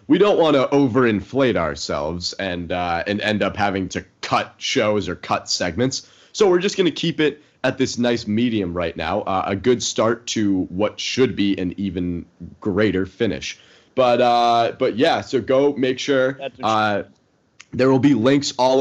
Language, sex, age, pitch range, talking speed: English, male, 30-49, 95-125 Hz, 180 wpm